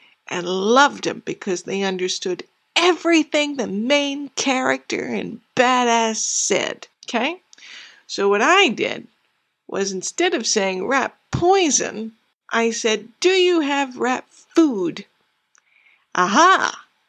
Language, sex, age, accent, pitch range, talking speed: English, female, 60-79, American, 205-285 Hz, 110 wpm